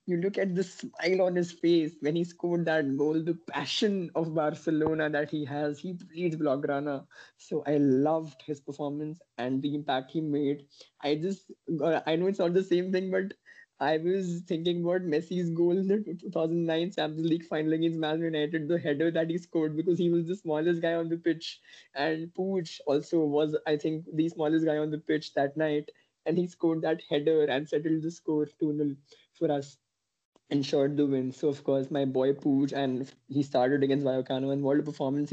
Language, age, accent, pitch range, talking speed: English, 20-39, Indian, 140-165 Hz, 200 wpm